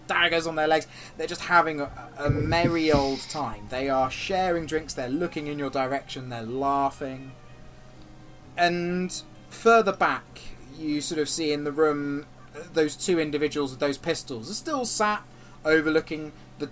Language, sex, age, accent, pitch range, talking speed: English, male, 20-39, British, 125-170 Hz, 160 wpm